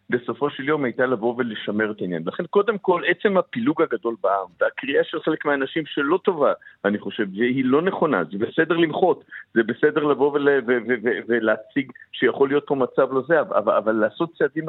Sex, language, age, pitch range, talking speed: male, Hebrew, 50-69, 120-165 Hz, 170 wpm